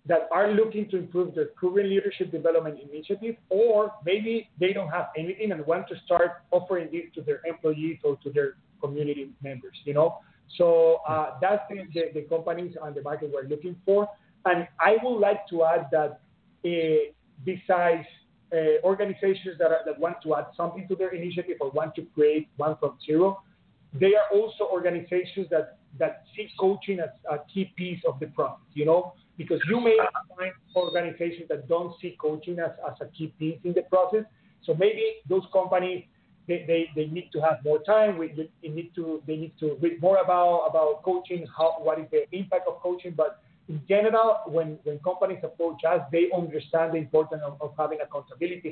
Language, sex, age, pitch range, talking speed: English, male, 40-59, 155-190 Hz, 190 wpm